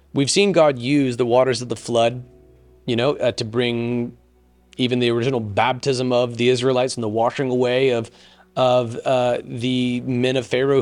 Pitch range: 110-130 Hz